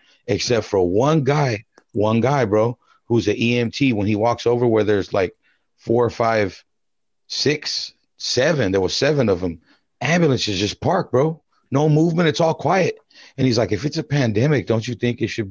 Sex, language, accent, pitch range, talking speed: male, English, American, 105-135 Hz, 185 wpm